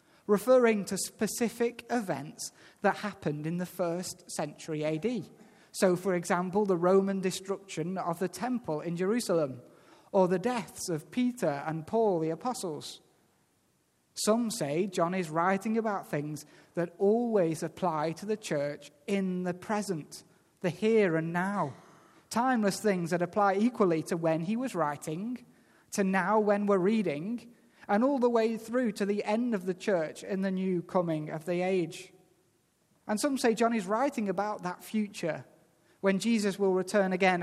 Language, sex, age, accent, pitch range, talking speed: English, male, 30-49, British, 165-215 Hz, 155 wpm